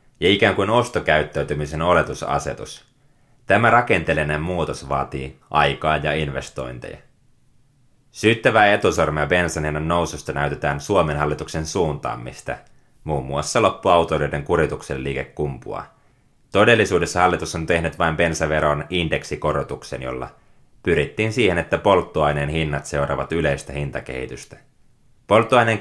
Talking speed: 100 wpm